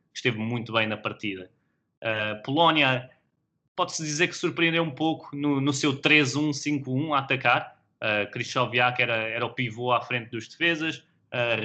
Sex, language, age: male, Portuguese, 20-39